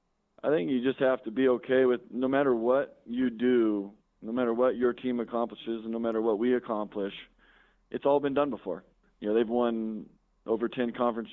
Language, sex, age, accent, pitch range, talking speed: English, male, 20-39, American, 110-125 Hz, 200 wpm